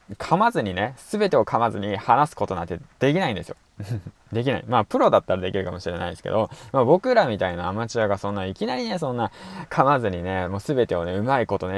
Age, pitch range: 20-39, 95-145 Hz